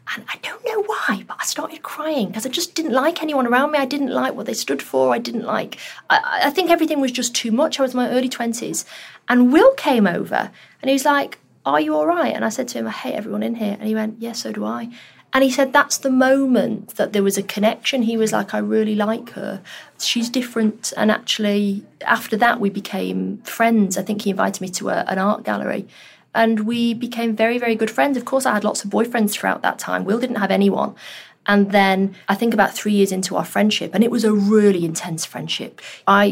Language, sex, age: English, female, 30-49